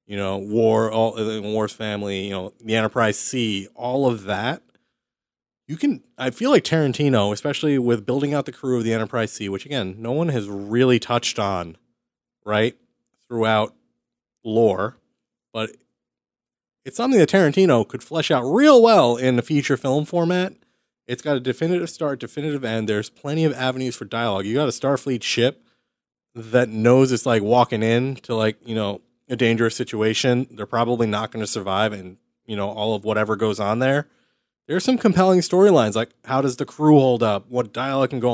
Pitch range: 110-140 Hz